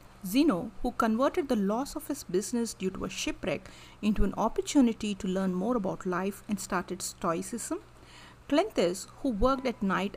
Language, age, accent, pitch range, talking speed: English, 50-69, Indian, 190-270 Hz, 165 wpm